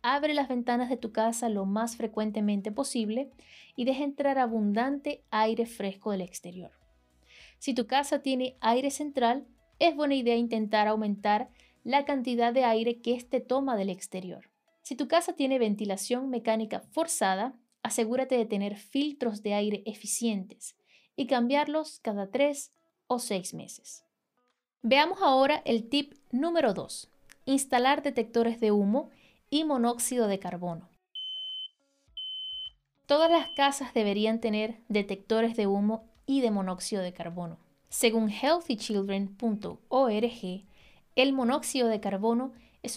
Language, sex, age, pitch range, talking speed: Spanish, female, 20-39, 210-270 Hz, 130 wpm